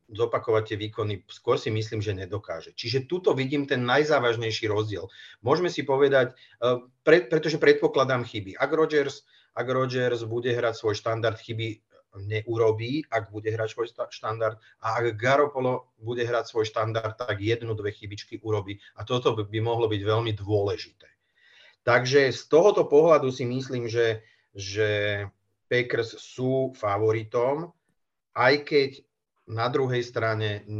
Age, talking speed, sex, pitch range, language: 30-49, 135 wpm, male, 105-125 Hz, Slovak